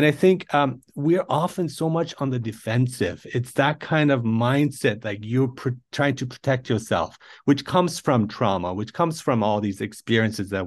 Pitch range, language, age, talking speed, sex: 115-150 Hz, English, 40-59, 185 wpm, male